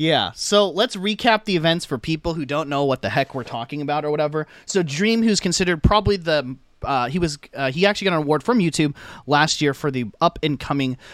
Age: 30-49